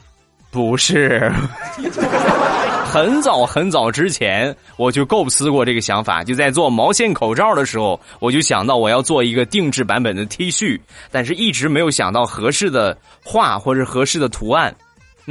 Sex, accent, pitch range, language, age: male, native, 115-160 Hz, Chinese, 20-39